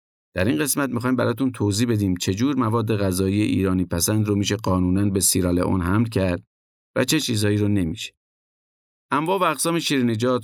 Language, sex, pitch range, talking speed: Persian, male, 95-125 Hz, 155 wpm